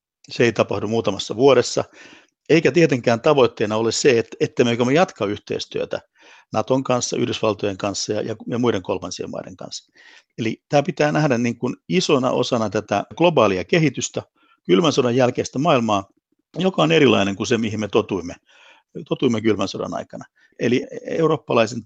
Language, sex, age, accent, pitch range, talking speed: Finnish, male, 60-79, native, 110-150 Hz, 150 wpm